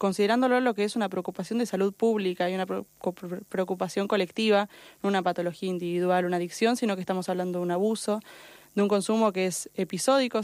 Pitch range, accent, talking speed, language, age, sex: 185-210 Hz, Argentinian, 185 wpm, Spanish, 20-39, female